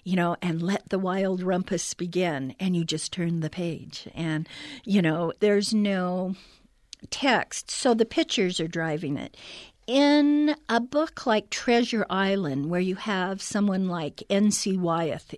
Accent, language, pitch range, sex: American, English, 175-220 Hz, female